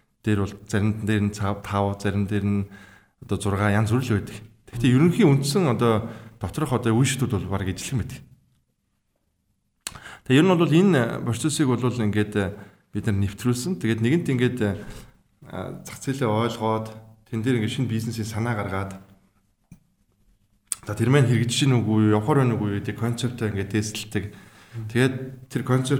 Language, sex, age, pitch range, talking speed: English, male, 20-39, 105-130 Hz, 130 wpm